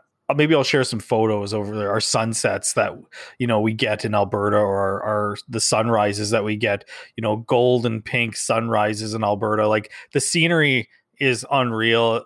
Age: 20-39